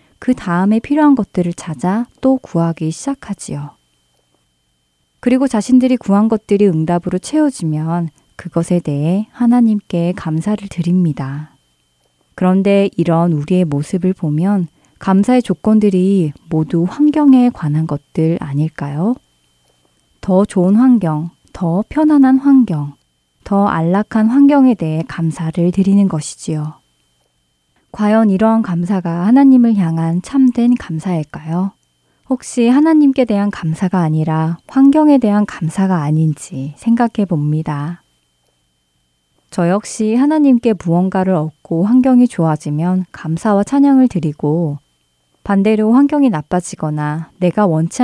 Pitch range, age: 155-220 Hz, 20-39